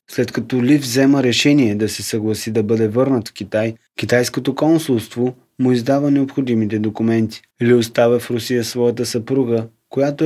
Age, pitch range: 20-39, 115-135 Hz